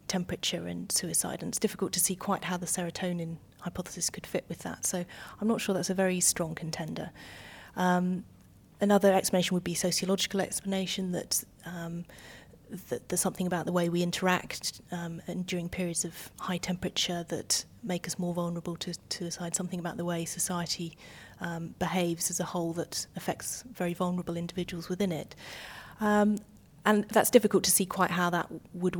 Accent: British